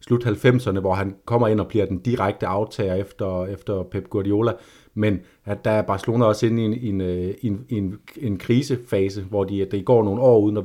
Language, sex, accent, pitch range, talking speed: Danish, male, native, 95-115 Hz, 210 wpm